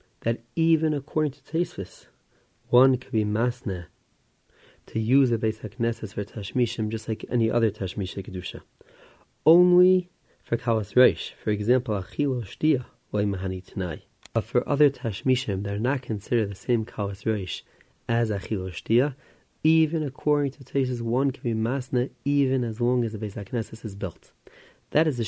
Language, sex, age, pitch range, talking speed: English, male, 30-49, 110-130 Hz, 150 wpm